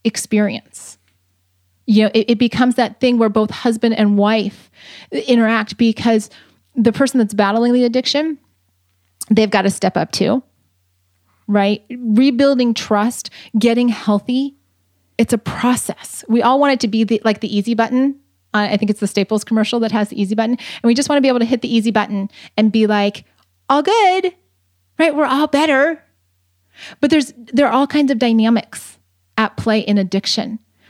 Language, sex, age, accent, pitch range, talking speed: English, female, 30-49, American, 200-250 Hz, 175 wpm